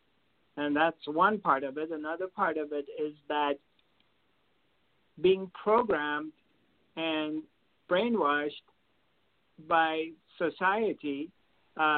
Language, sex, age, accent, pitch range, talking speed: English, male, 60-79, American, 150-175 Hz, 95 wpm